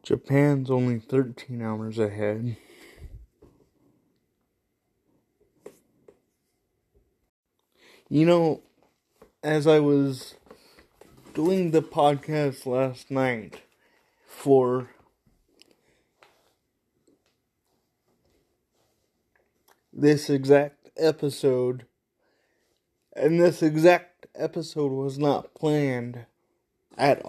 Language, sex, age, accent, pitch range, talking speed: English, male, 20-39, American, 135-170 Hz, 60 wpm